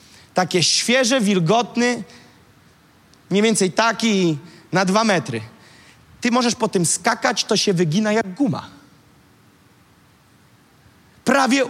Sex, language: male, Polish